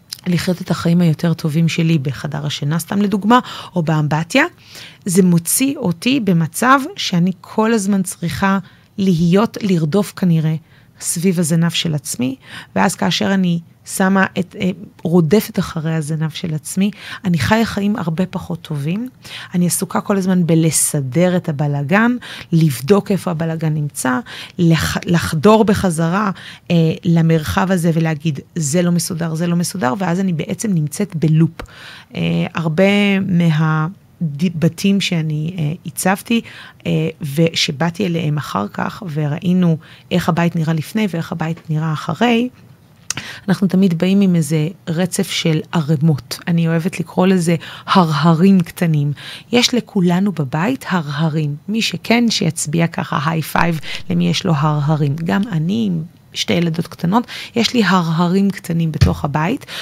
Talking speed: 130 wpm